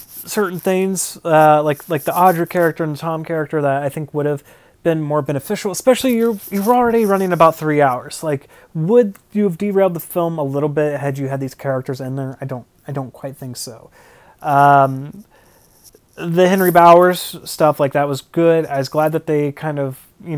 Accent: American